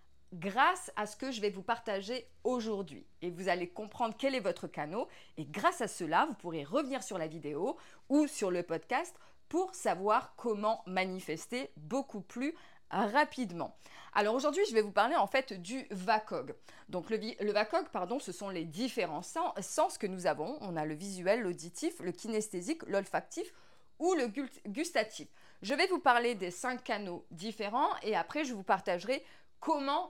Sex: female